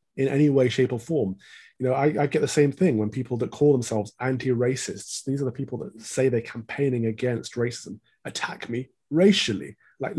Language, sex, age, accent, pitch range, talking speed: English, male, 30-49, British, 110-145 Hz, 200 wpm